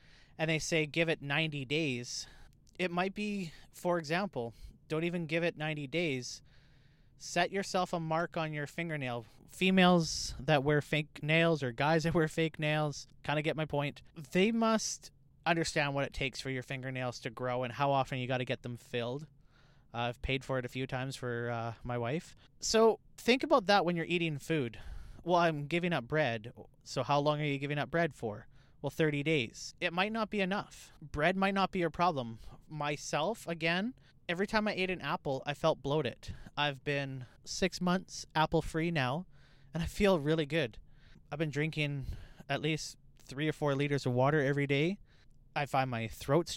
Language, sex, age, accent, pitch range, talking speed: English, male, 20-39, American, 130-170 Hz, 190 wpm